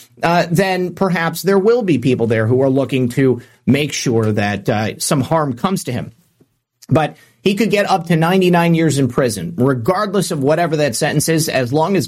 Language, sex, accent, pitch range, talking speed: English, male, American, 130-185 Hz, 200 wpm